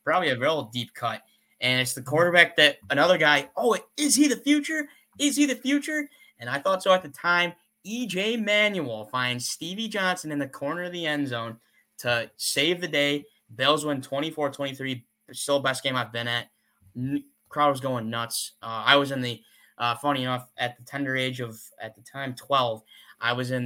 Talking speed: 195 wpm